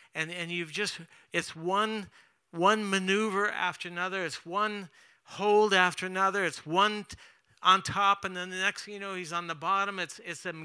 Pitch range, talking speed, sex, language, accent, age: 155-205 Hz, 185 wpm, male, English, American, 60-79